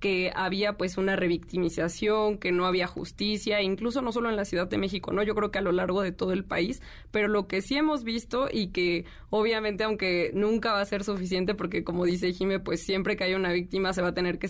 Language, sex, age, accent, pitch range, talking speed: Spanish, female, 20-39, Mexican, 185-215 Hz, 240 wpm